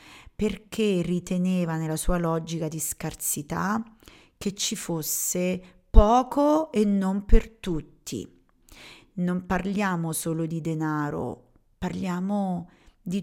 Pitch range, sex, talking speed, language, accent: 165-200 Hz, female, 100 wpm, Italian, native